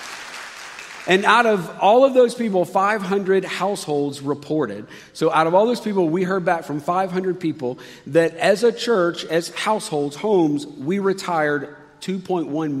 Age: 50-69